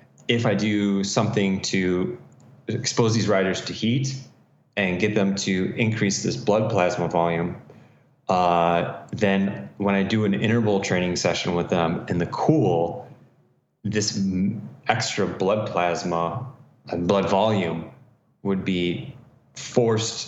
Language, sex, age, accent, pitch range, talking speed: English, male, 20-39, American, 95-110 Hz, 125 wpm